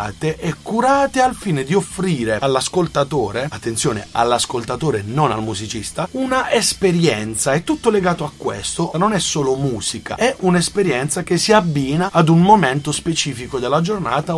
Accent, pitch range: native, 125-200 Hz